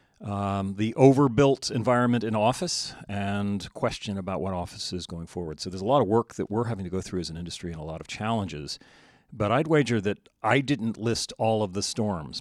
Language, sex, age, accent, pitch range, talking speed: English, male, 40-59, American, 90-110 Hz, 220 wpm